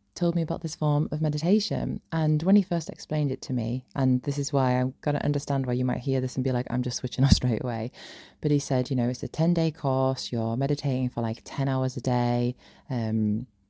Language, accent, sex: English, British, female